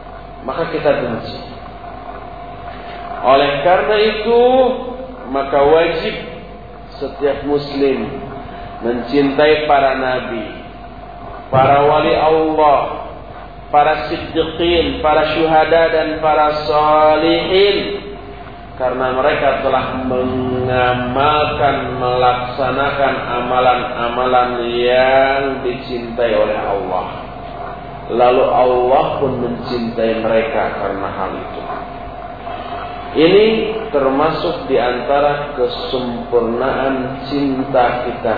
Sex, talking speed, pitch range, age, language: male, 75 wpm, 130-190 Hz, 40-59, English